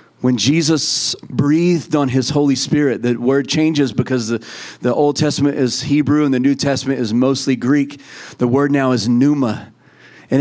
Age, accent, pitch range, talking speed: 30-49, American, 120-140 Hz, 175 wpm